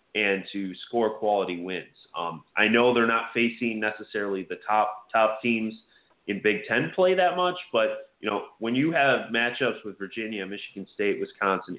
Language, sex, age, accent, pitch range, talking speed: English, male, 30-49, American, 95-125 Hz, 175 wpm